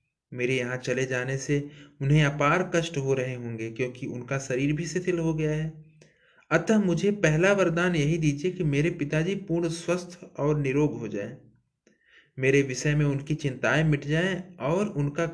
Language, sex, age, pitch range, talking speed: Hindi, male, 20-39, 130-165 Hz, 165 wpm